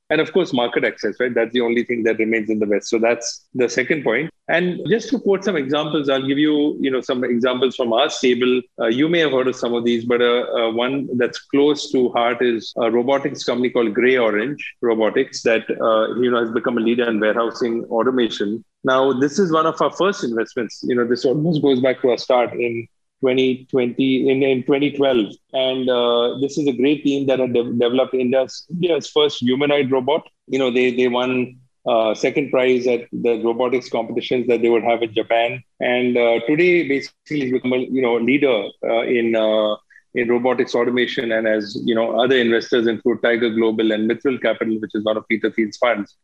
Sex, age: male, 30-49